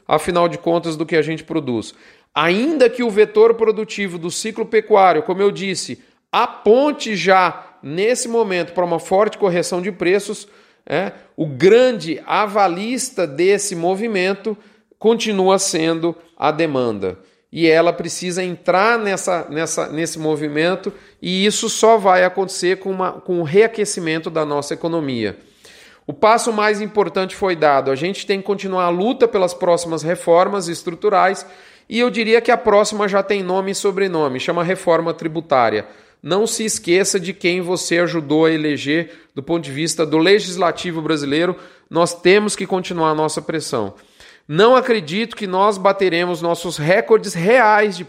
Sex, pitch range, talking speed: male, 165-205 Hz, 150 wpm